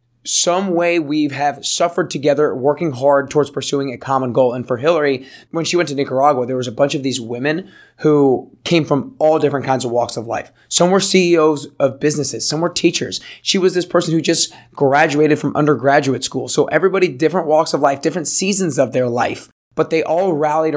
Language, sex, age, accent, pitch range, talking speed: English, male, 20-39, American, 135-160 Hz, 205 wpm